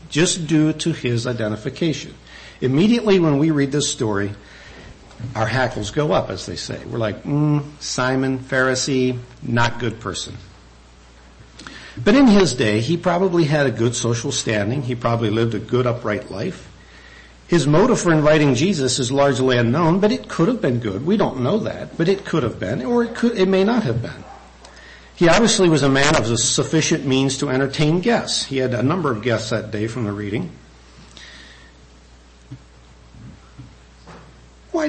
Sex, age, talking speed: male, 60-79, 170 wpm